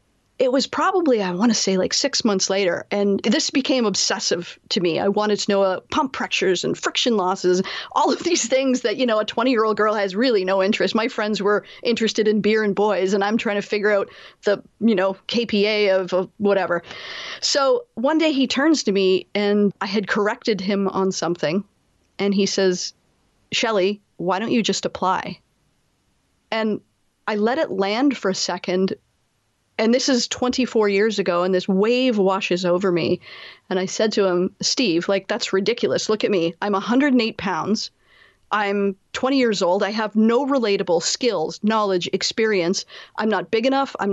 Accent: American